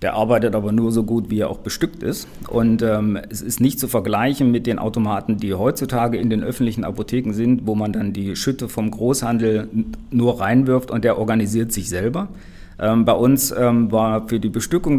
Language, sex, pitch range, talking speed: German, male, 100-120 Hz, 200 wpm